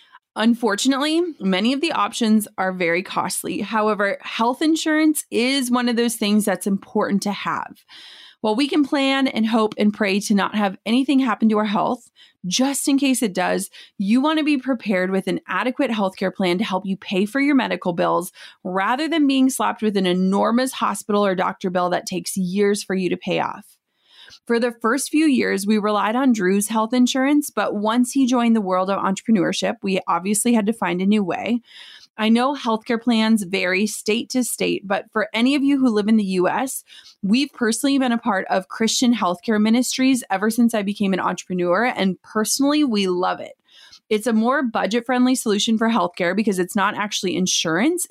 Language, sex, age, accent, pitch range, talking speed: English, female, 30-49, American, 200-255 Hz, 195 wpm